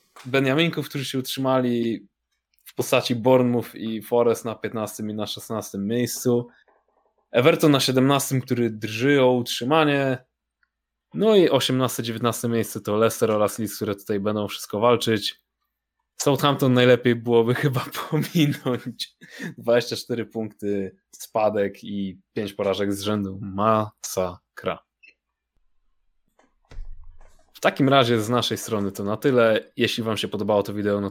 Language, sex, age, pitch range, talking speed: Polish, male, 20-39, 105-130 Hz, 130 wpm